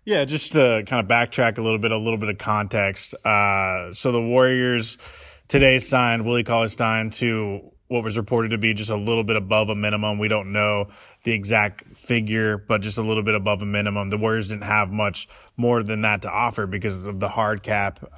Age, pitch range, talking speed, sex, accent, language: 20-39, 105-120 Hz, 210 wpm, male, American, English